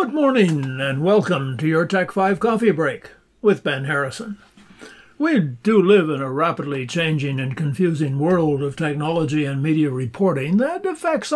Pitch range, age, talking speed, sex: 160-215 Hz, 60-79, 160 wpm, male